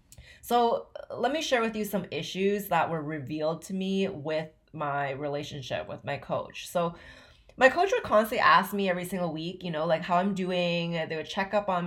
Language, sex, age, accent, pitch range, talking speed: English, female, 20-39, American, 160-200 Hz, 200 wpm